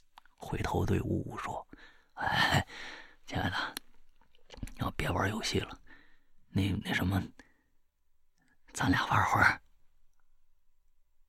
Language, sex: Chinese, male